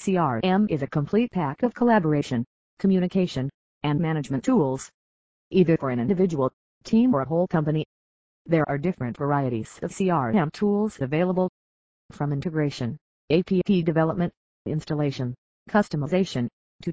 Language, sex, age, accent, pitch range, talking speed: English, female, 40-59, American, 135-185 Hz, 125 wpm